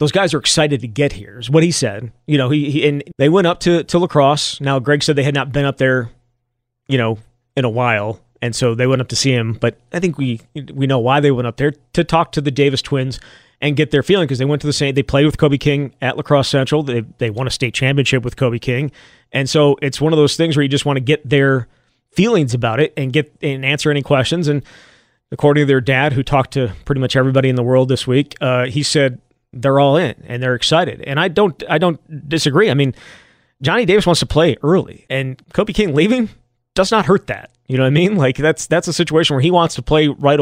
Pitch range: 130-155 Hz